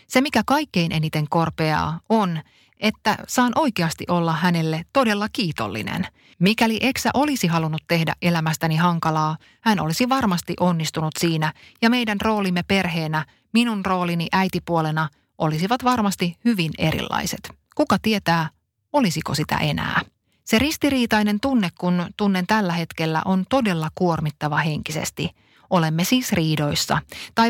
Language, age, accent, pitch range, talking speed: Finnish, 30-49, native, 160-215 Hz, 120 wpm